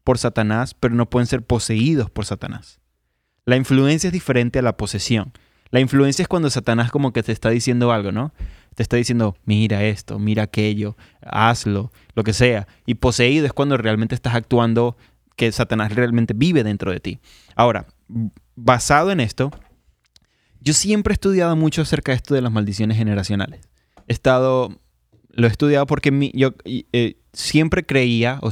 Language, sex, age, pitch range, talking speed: Spanish, male, 20-39, 110-135 Hz, 170 wpm